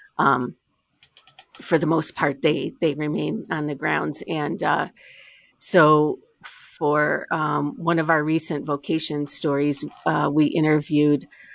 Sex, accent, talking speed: female, American, 130 wpm